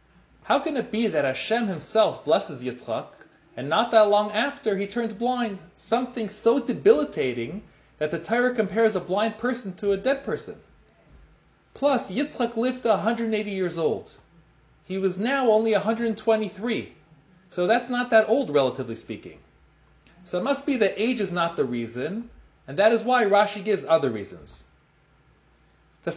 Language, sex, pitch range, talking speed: English, male, 160-225 Hz, 155 wpm